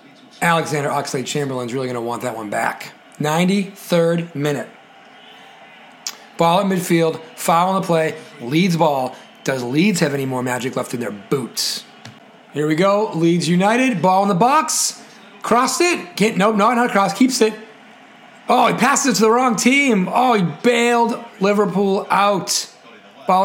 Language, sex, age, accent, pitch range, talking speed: English, male, 40-59, American, 160-210 Hz, 155 wpm